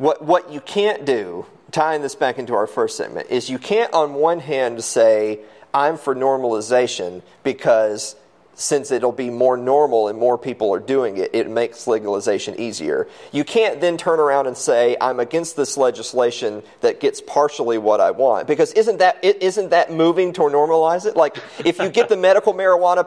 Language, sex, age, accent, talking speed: English, male, 40-59, American, 185 wpm